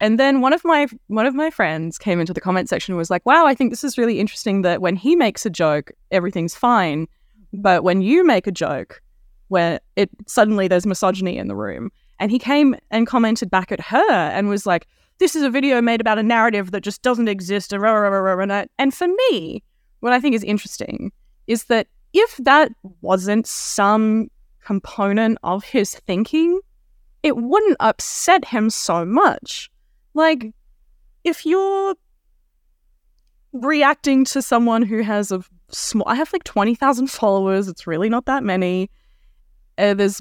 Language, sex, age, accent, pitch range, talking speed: English, female, 20-39, Australian, 190-275 Hz, 170 wpm